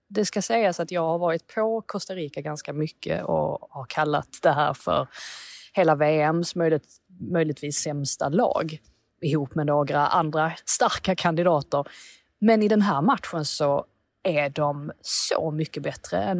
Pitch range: 150-180 Hz